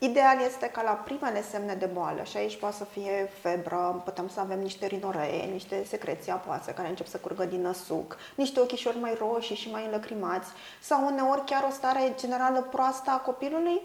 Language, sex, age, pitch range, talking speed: Romanian, female, 20-39, 220-275 Hz, 190 wpm